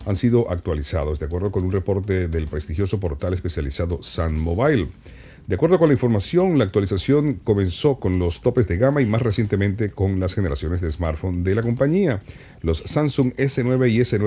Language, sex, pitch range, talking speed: Spanish, male, 90-125 Hz, 180 wpm